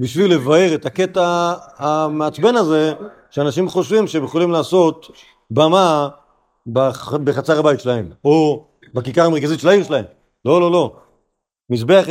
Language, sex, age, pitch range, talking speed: Hebrew, male, 50-69, 140-185 Hz, 125 wpm